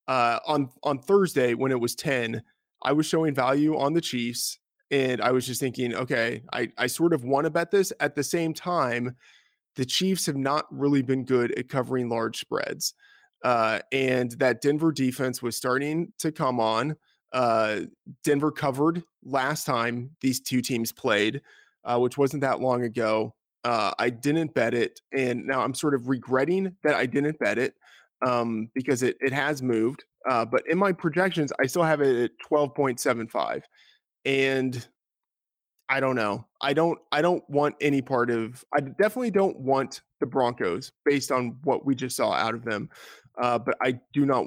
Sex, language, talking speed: male, English, 180 wpm